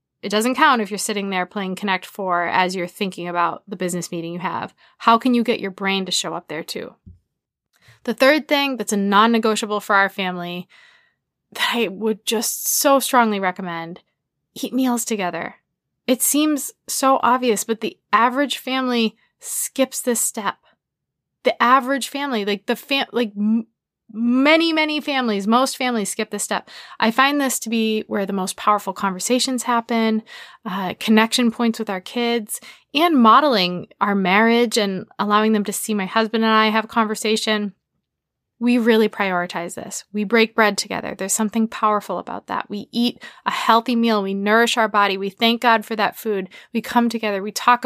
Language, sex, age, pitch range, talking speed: English, female, 20-39, 200-240 Hz, 175 wpm